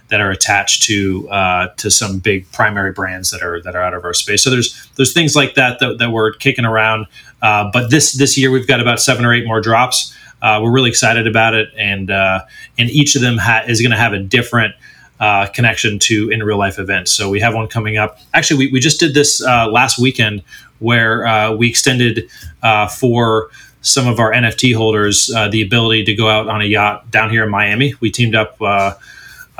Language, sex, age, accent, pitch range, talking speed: English, male, 30-49, American, 105-120 Hz, 225 wpm